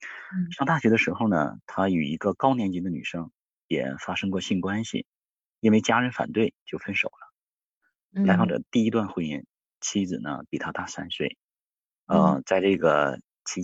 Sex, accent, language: male, native, Chinese